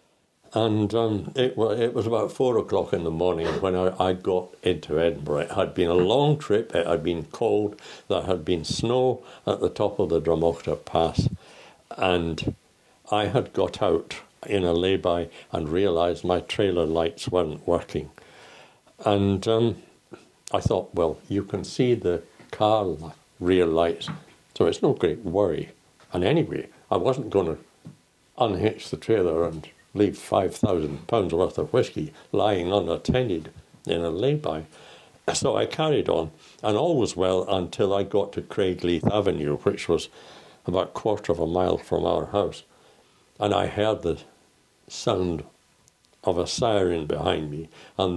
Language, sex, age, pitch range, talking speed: English, male, 60-79, 85-105 Hz, 160 wpm